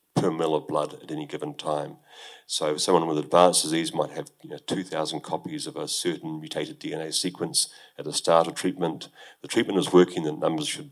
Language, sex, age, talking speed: English, male, 40-59, 190 wpm